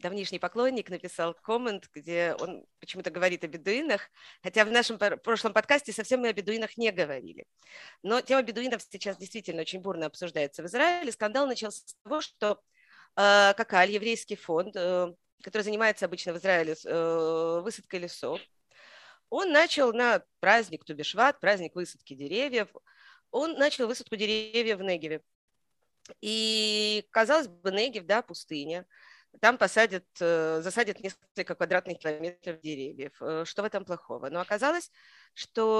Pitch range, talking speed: 175-225 Hz, 135 wpm